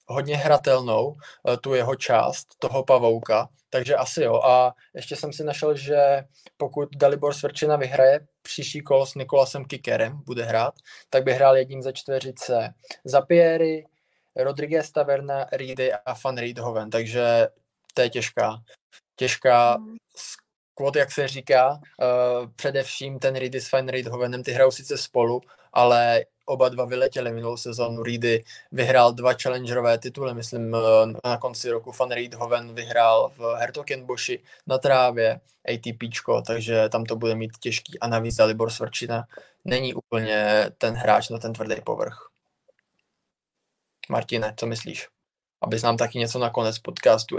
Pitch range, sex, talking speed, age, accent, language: 115-140 Hz, male, 140 wpm, 20-39, native, Czech